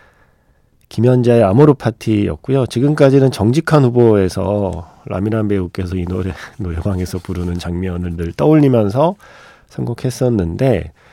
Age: 40-59